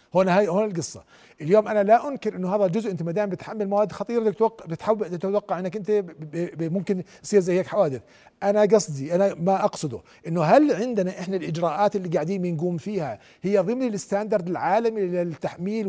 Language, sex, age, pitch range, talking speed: Arabic, male, 50-69, 175-220 Hz, 180 wpm